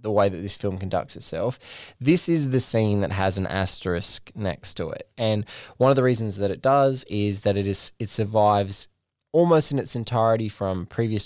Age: 20-39